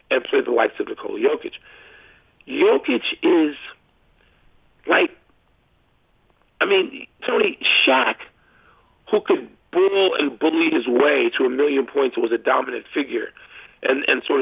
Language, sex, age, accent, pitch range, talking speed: English, male, 50-69, American, 330-415 Hz, 135 wpm